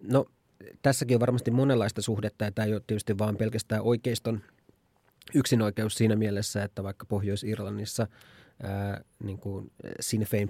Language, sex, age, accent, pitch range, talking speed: Finnish, male, 30-49, native, 100-115 Hz, 125 wpm